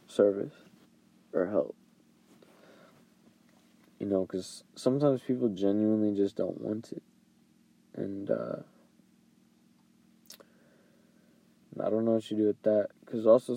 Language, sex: English, male